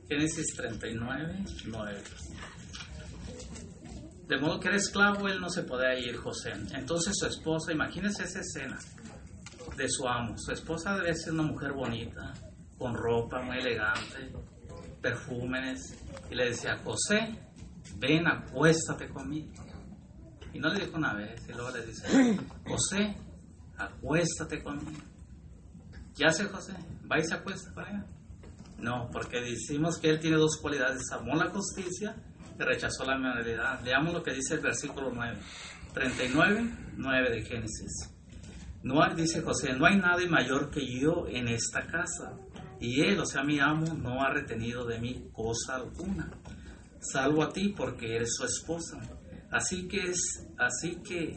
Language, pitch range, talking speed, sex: Spanish, 115-165 Hz, 145 wpm, male